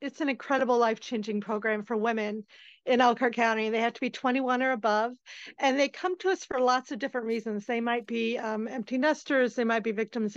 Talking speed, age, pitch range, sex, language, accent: 215 wpm, 40-59, 230-265 Hz, female, English, American